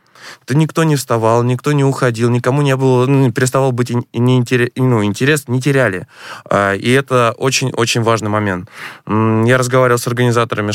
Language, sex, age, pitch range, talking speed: Russian, male, 20-39, 110-130 Hz, 130 wpm